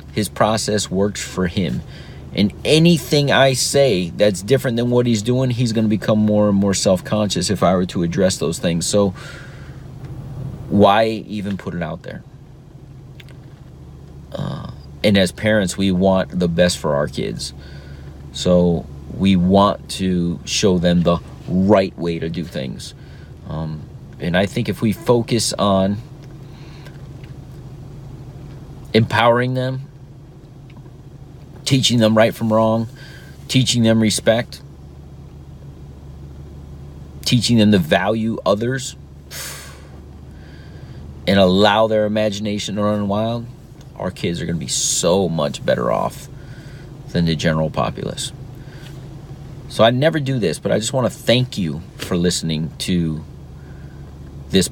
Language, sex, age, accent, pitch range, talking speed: English, male, 40-59, American, 80-130 Hz, 130 wpm